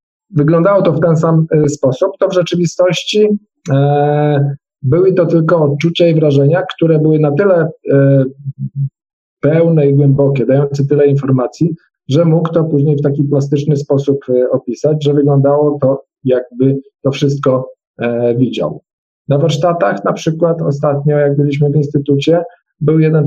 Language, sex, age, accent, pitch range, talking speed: Polish, male, 40-59, native, 135-170 Hz, 135 wpm